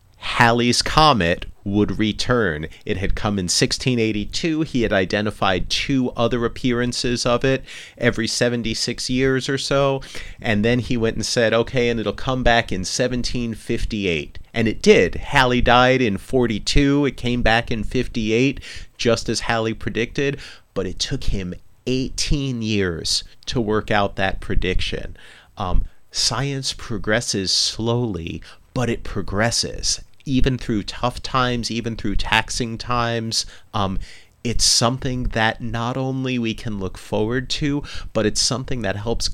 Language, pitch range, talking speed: English, 100-125 Hz, 140 wpm